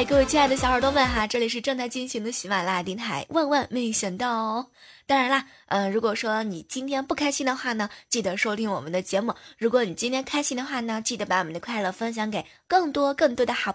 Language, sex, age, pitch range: Chinese, female, 20-39, 200-280 Hz